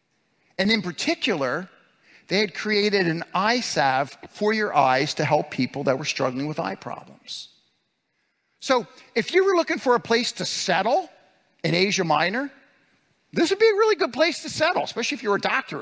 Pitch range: 155-240 Hz